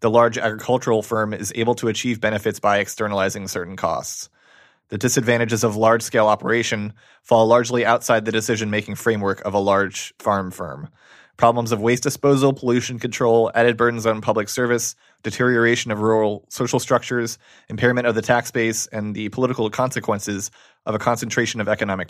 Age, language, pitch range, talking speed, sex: 30-49, English, 105-120 Hz, 160 wpm, male